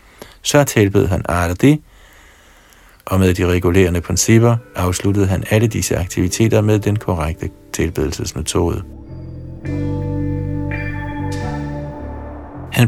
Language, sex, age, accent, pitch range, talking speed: Danish, male, 60-79, native, 90-110 Hz, 95 wpm